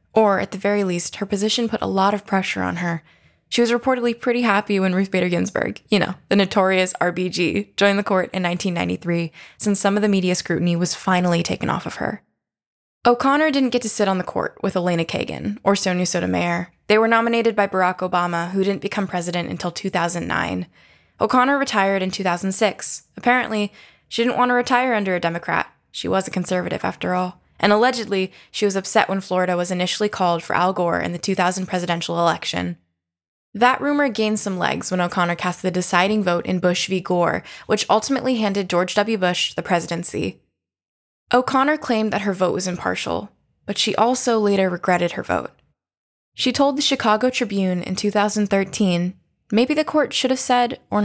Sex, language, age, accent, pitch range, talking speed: female, English, 10-29, American, 180-220 Hz, 185 wpm